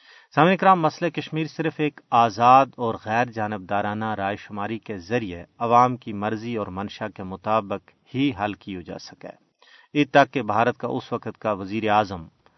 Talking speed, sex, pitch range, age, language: 175 wpm, male, 105-130 Hz, 40-59, Urdu